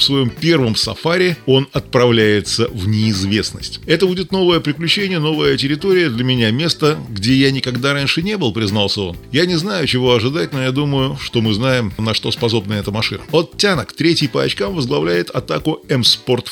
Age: 20-39